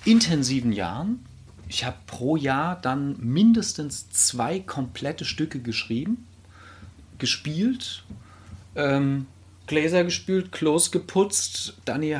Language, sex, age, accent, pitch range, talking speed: German, male, 40-59, German, 100-155 Hz, 95 wpm